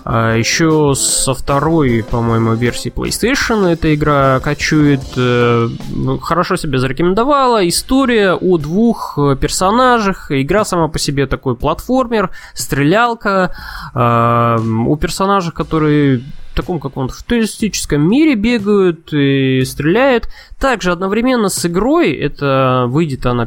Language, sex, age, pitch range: Russian, male, 20-39, 135-200 Hz